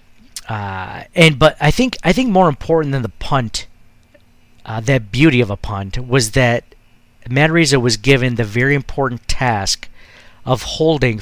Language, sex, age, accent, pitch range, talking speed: English, male, 50-69, American, 115-140 Hz, 155 wpm